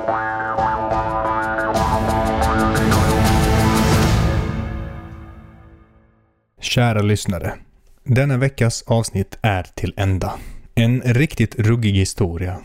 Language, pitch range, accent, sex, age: Swedish, 100-125 Hz, native, male, 30-49